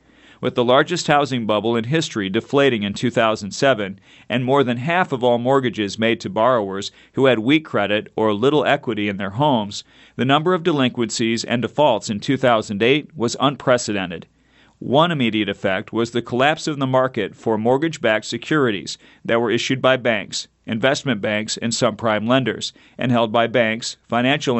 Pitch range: 110-135 Hz